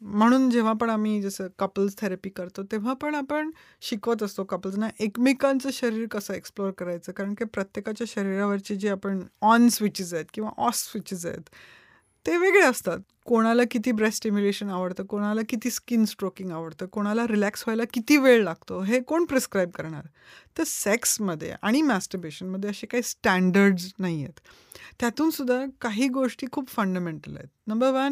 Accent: Indian